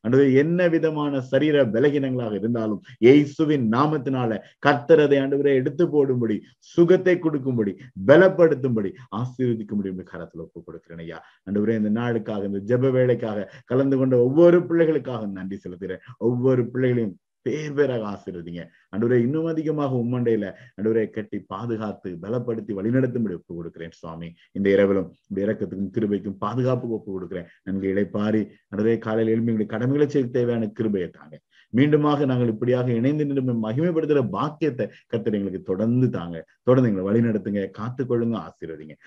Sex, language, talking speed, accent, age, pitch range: male, Tamil, 125 wpm, native, 50-69, 100-130 Hz